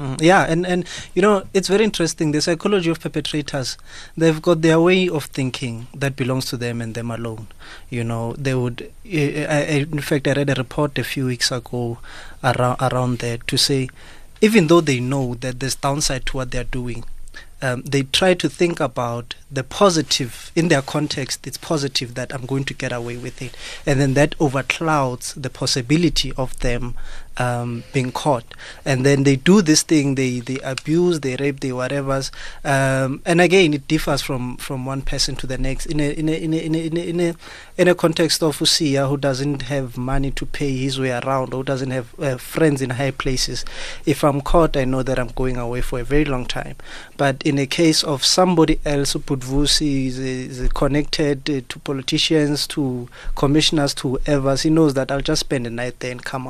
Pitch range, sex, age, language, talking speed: 130-155 Hz, male, 20-39, English, 200 wpm